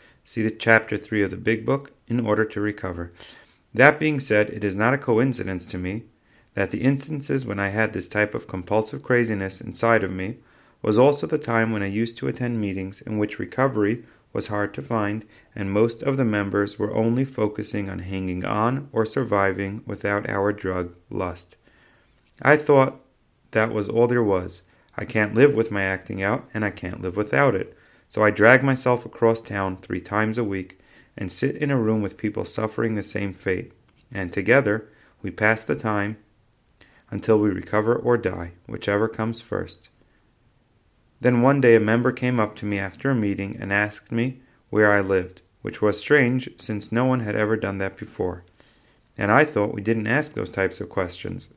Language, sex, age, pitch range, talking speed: English, male, 30-49, 100-120 Hz, 190 wpm